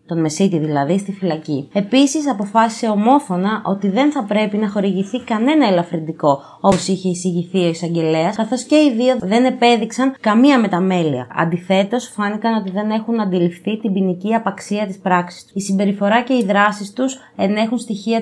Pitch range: 175-230 Hz